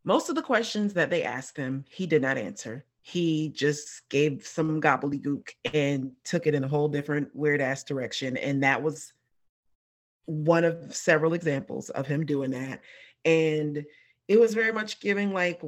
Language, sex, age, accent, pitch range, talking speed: English, female, 30-49, American, 140-175 Hz, 170 wpm